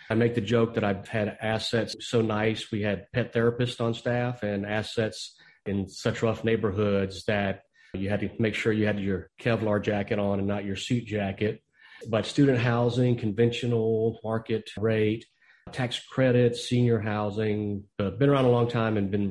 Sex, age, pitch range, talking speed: male, 40-59, 100-115 Hz, 175 wpm